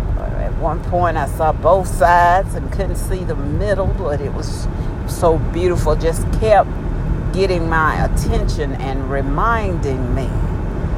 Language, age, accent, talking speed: English, 50-69, American, 130 wpm